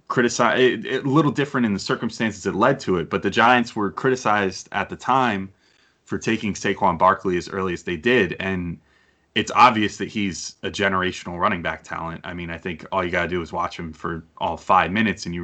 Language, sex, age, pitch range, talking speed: English, male, 20-39, 85-110 Hz, 220 wpm